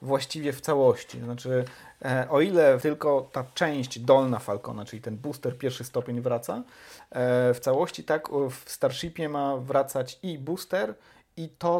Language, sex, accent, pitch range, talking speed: Polish, male, native, 115-135 Hz, 140 wpm